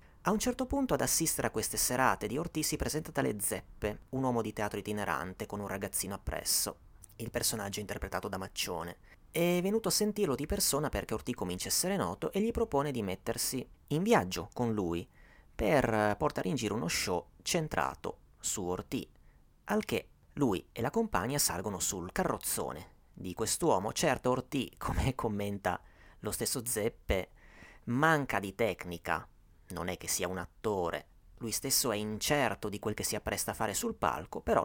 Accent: native